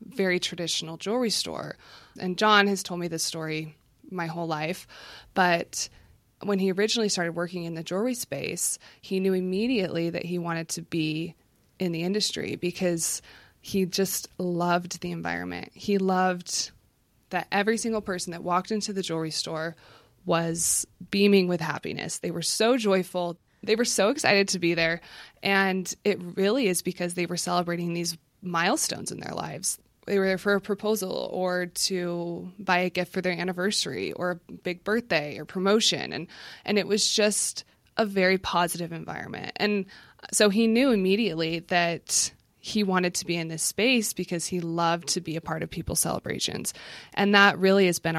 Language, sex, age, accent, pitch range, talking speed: English, female, 20-39, American, 165-195 Hz, 170 wpm